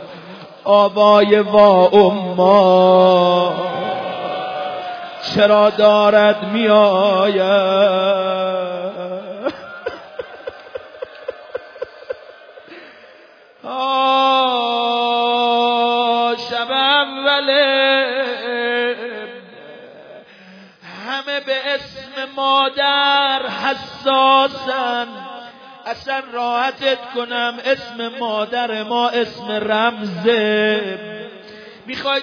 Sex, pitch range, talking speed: male, 210-265 Hz, 40 wpm